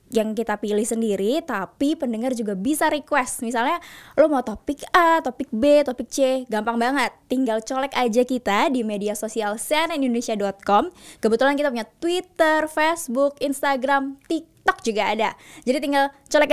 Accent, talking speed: native, 145 wpm